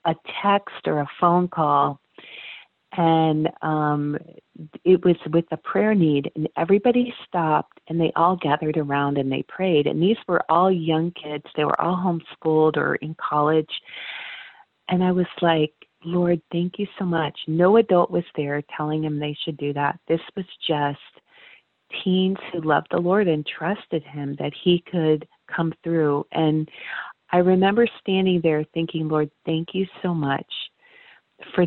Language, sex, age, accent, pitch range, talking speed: English, female, 40-59, American, 150-180 Hz, 160 wpm